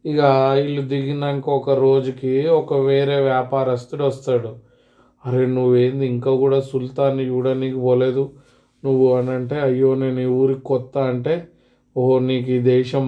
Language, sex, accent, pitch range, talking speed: Telugu, male, native, 130-140 Hz, 135 wpm